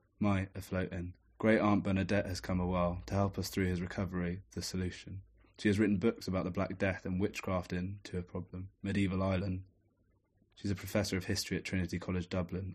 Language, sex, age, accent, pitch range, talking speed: English, male, 20-39, British, 90-100 Hz, 200 wpm